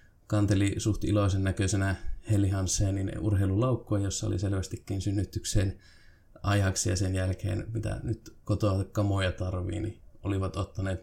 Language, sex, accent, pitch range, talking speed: Finnish, male, native, 95-105 Hz, 125 wpm